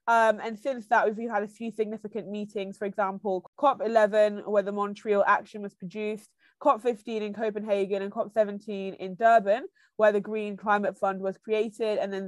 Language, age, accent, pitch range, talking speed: English, 20-39, British, 195-225 Hz, 170 wpm